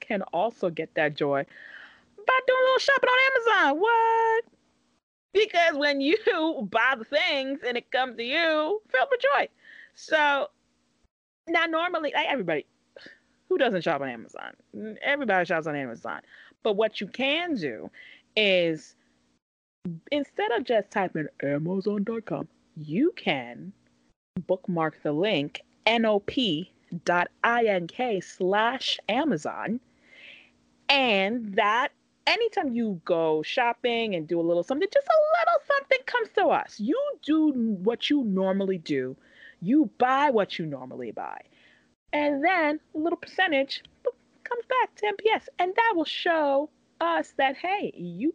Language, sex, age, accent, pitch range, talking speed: English, female, 30-49, American, 190-320 Hz, 135 wpm